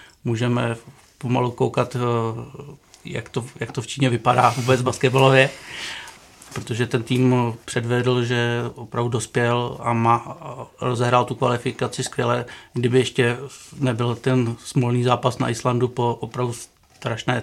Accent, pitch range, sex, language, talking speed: native, 120-125 Hz, male, Czech, 125 wpm